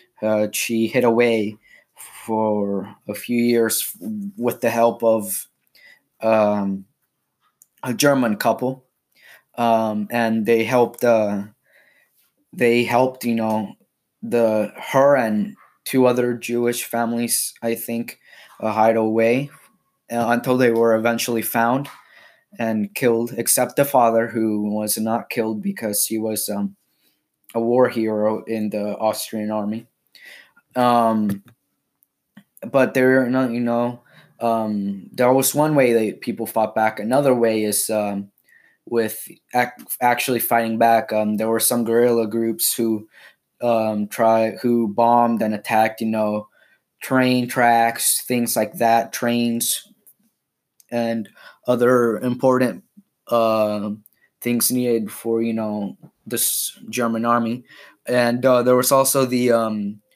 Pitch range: 110-120 Hz